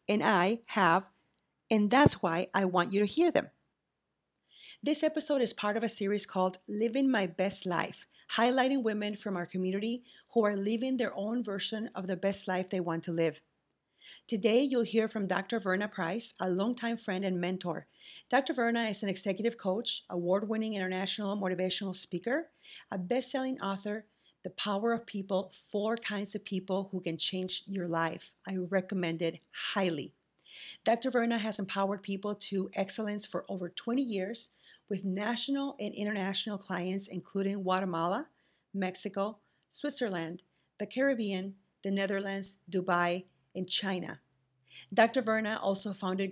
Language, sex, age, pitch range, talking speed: English, female, 40-59, 185-225 Hz, 150 wpm